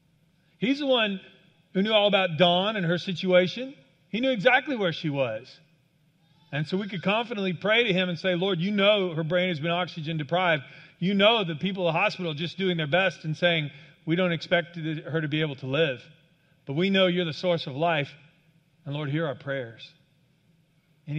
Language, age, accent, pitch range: English, 40-59, American, 155-185 Hz